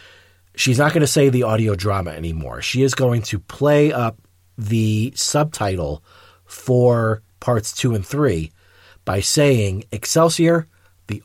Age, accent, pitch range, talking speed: 40-59, American, 95-125 Hz, 140 wpm